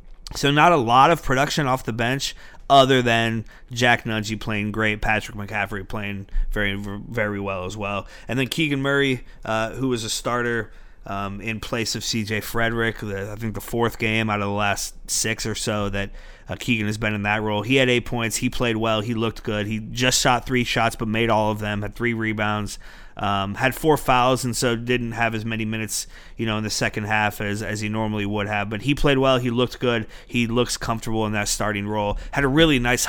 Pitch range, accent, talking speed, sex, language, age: 105-125 Hz, American, 220 wpm, male, English, 30-49